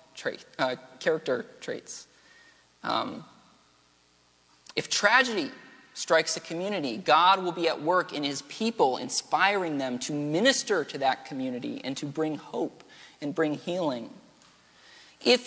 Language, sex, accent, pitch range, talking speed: English, male, American, 135-190 Hz, 130 wpm